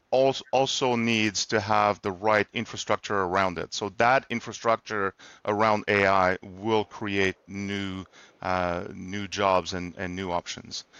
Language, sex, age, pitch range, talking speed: English, male, 40-59, 100-120 Hz, 130 wpm